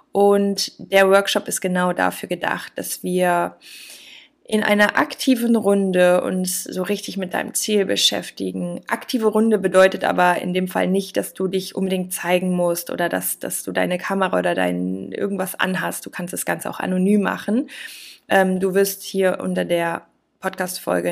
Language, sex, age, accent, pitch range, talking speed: German, female, 20-39, German, 175-205 Hz, 160 wpm